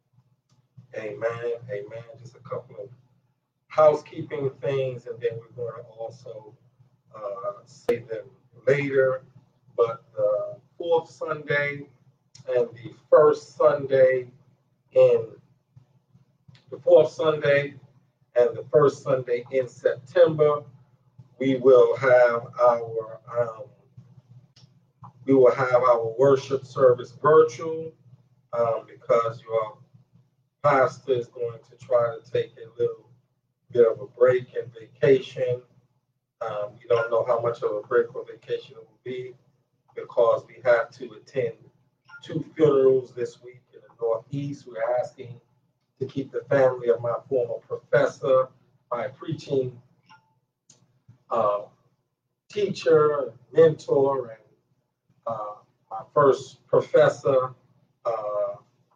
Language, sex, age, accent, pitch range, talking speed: English, male, 50-69, American, 125-155 Hz, 115 wpm